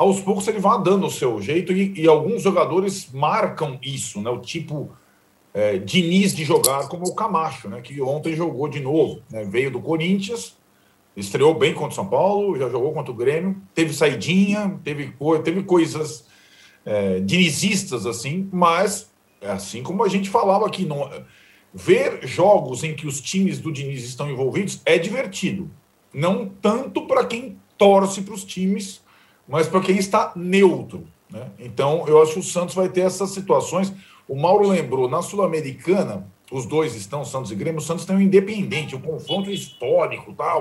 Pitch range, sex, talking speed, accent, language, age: 155-195 Hz, male, 175 wpm, Brazilian, Portuguese, 40-59